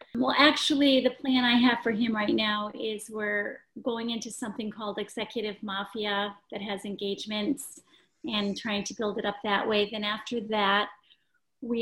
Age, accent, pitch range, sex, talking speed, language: 40-59, American, 215-265 Hz, female, 170 wpm, English